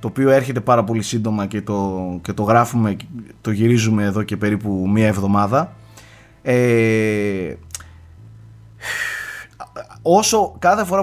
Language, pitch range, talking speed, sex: Greek, 105-145 Hz, 110 wpm, male